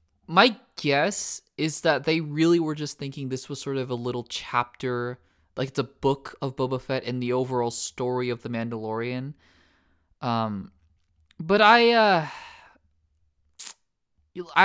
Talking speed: 140 wpm